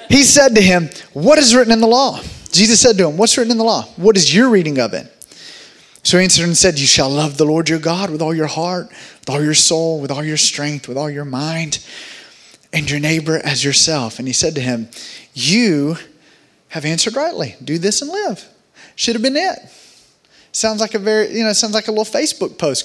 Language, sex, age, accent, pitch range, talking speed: English, male, 30-49, American, 150-225 Hz, 230 wpm